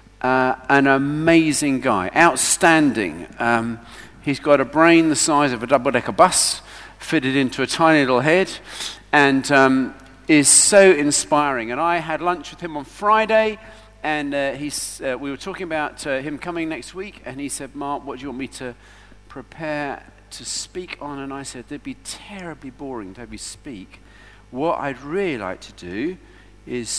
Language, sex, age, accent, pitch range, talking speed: English, male, 50-69, British, 110-145 Hz, 180 wpm